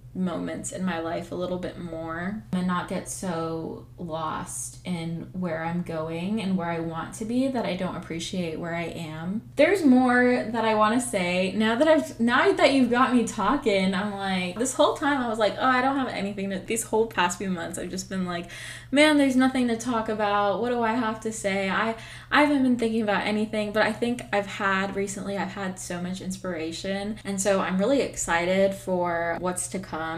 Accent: American